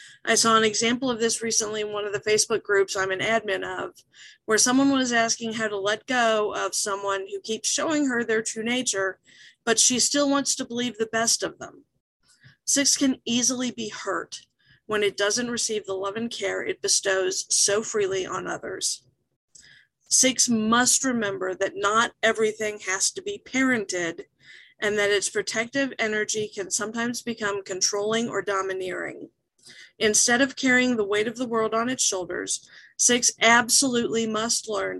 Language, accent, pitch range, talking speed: English, American, 200-250 Hz, 170 wpm